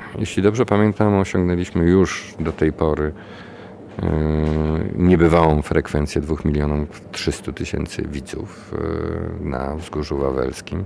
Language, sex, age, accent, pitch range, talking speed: Polish, male, 50-69, native, 75-95 Hz, 110 wpm